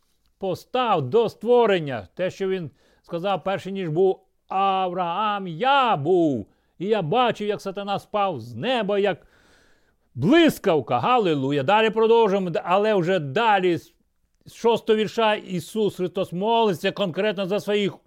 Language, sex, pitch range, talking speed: Ukrainian, male, 155-210 Hz, 125 wpm